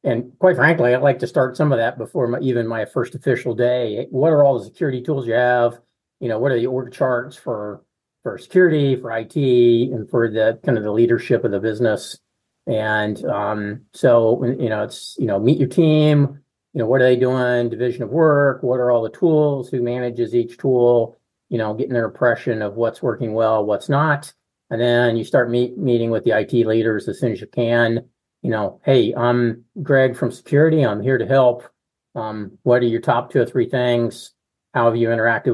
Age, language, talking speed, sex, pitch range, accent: 40-59, English, 215 wpm, male, 110-125 Hz, American